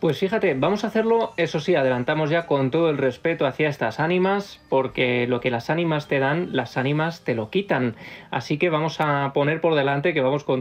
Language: Spanish